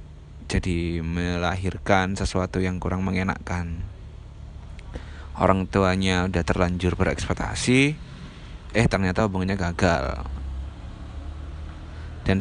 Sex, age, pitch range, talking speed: male, 20-39, 90-105 Hz, 75 wpm